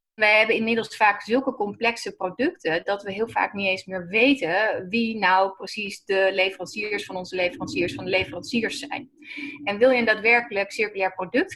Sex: female